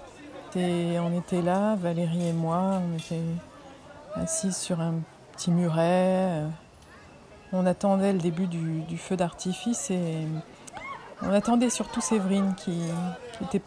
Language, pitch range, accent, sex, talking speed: French, 165-195 Hz, French, female, 120 wpm